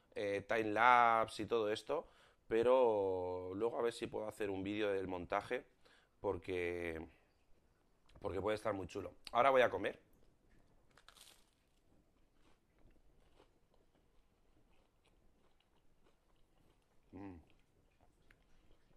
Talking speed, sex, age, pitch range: 90 wpm, male, 30-49, 95-120 Hz